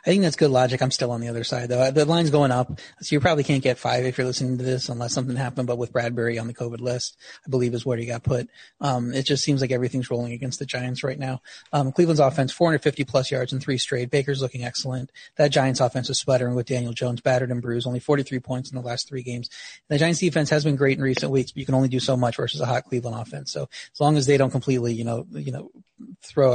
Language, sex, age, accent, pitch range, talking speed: English, male, 30-49, American, 120-140 Hz, 270 wpm